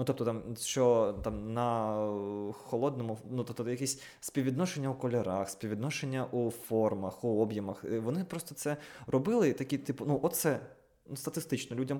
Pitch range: 110-155 Hz